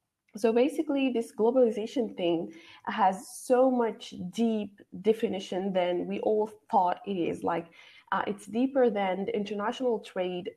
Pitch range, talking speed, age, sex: 190-245 Hz, 135 wpm, 20-39, female